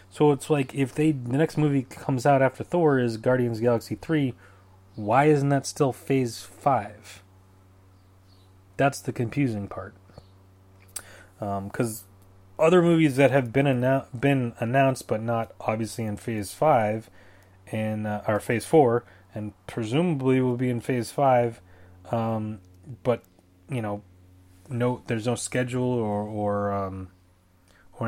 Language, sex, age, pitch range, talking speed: English, male, 30-49, 95-130 Hz, 145 wpm